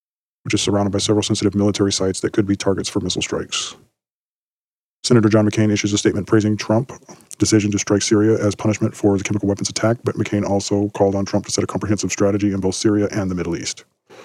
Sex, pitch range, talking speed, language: male, 90-105 Hz, 220 wpm, English